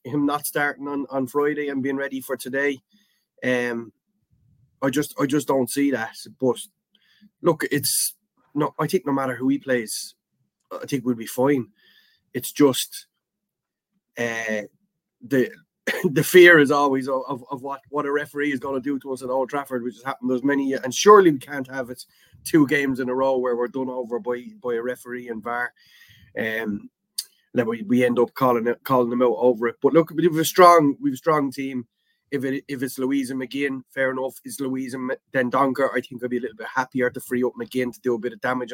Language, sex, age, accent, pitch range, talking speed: English, male, 20-39, Irish, 125-145 Hz, 215 wpm